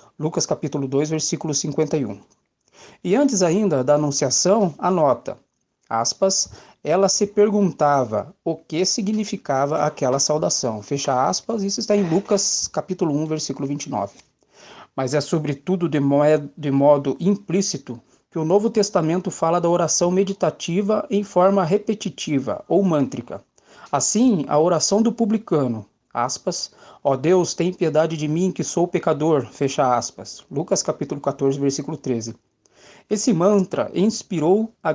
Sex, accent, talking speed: male, Brazilian, 135 wpm